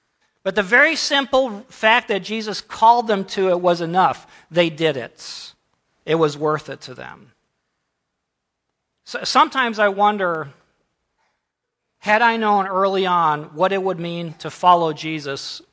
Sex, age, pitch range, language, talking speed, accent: male, 40-59, 155-200 Hz, English, 140 wpm, American